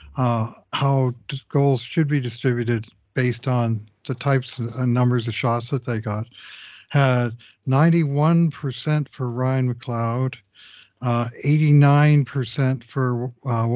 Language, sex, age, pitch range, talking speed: English, male, 60-79, 120-140 Hz, 125 wpm